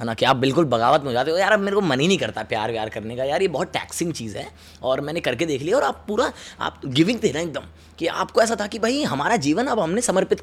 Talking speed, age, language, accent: 290 wpm, 20-39, Hindi, native